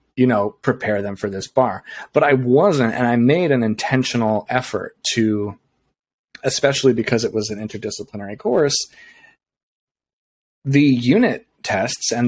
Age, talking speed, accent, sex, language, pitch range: 30-49, 135 wpm, American, male, English, 105-125 Hz